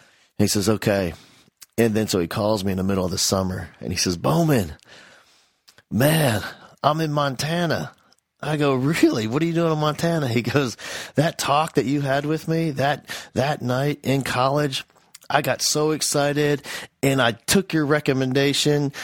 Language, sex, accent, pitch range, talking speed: English, male, American, 110-150 Hz, 175 wpm